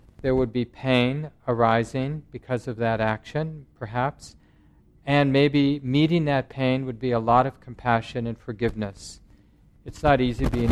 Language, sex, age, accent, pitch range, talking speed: English, male, 40-59, American, 110-130 Hz, 150 wpm